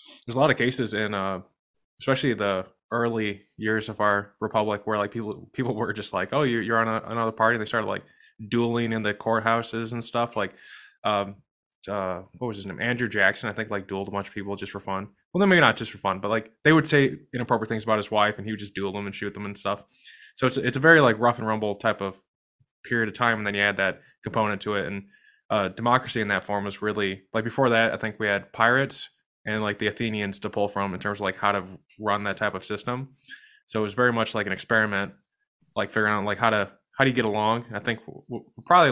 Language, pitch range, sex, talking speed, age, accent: English, 100-120 Hz, male, 255 wpm, 20-39, American